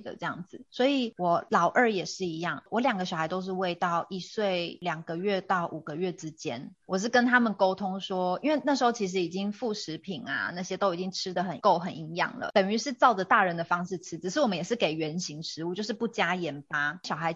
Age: 20-39